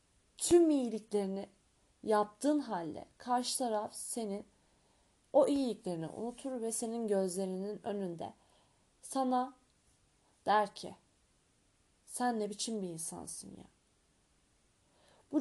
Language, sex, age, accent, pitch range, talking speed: Turkish, female, 30-49, native, 180-230 Hz, 95 wpm